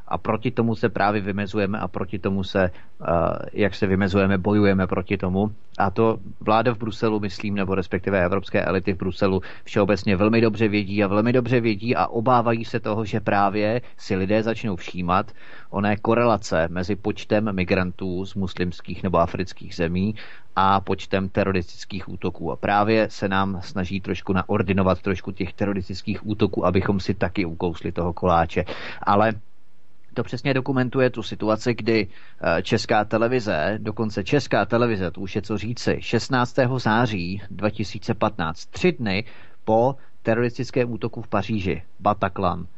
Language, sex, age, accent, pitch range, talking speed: Czech, male, 30-49, native, 95-115 Hz, 150 wpm